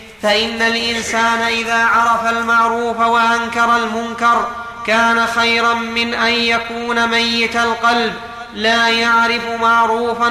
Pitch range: 230-240 Hz